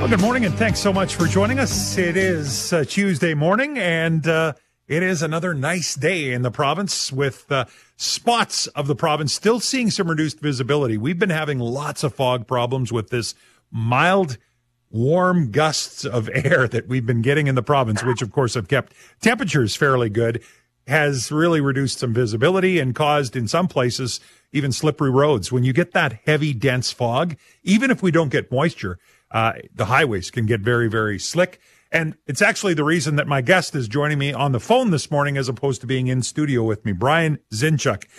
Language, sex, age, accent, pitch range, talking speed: English, male, 40-59, American, 125-165 Hz, 195 wpm